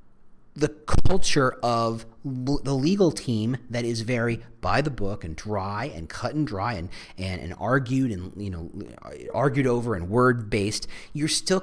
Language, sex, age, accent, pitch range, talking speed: English, male, 40-59, American, 105-155 Hz, 170 wpm